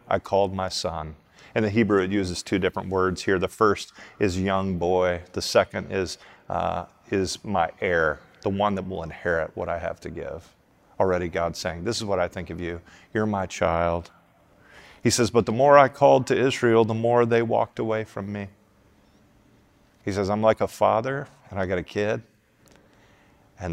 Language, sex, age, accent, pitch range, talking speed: English, male, 40-59, American, 90-110 Hz, 190 wpm